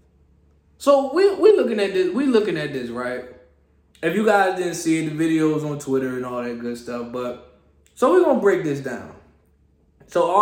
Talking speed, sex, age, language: 195 wpm, male, 20-39, English